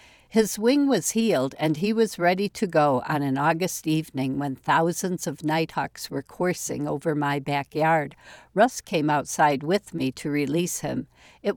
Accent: American